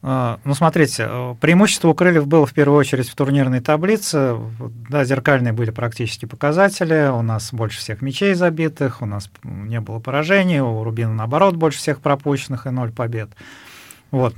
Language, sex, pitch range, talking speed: Russian, male, 120-150 Hz, 160 wpm